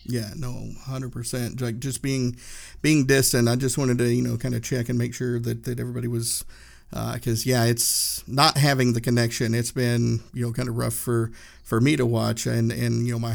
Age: 50-69